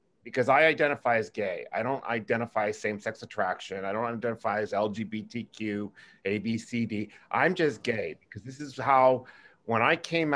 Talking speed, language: 150 wpm, English